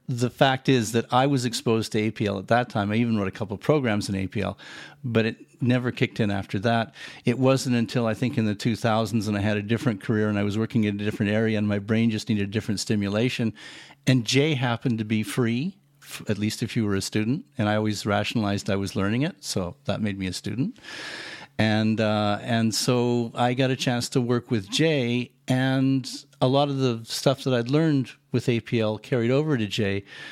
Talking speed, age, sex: 225 wpm, 50-69, male